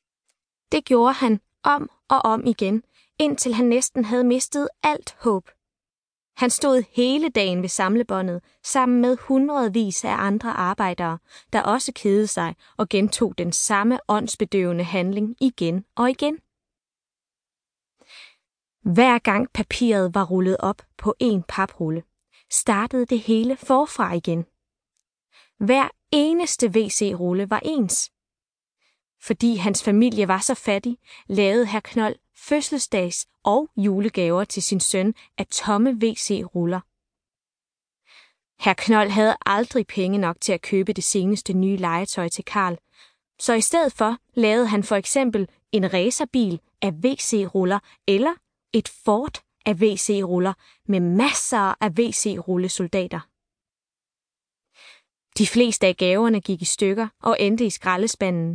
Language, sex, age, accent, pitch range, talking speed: Danish, female, 20-39, native, 190-245 Hz, 125 wpm